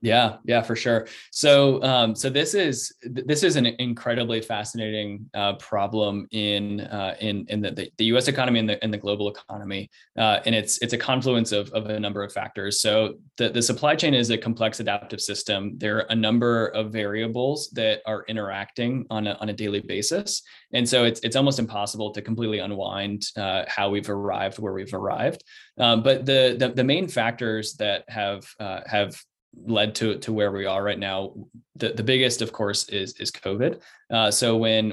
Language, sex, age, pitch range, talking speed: English, male, 20-39, 100-120 Hz, 195 wpm